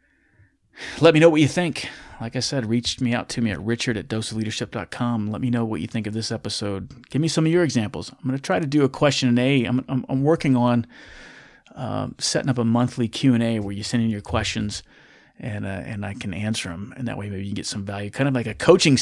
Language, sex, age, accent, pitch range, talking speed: English, male, 30-49, American, 110-130 Hz, 250 wpm